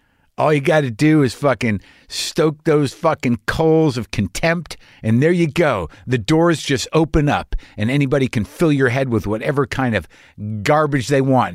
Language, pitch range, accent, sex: English, 105-155 Hz, American, male